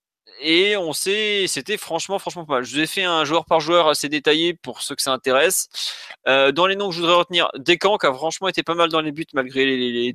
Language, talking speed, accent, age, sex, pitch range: French, 260 wpm, French, 20-39, male, 135-180 Hz